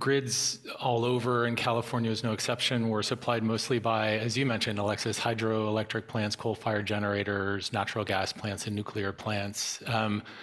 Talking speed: 160 wpm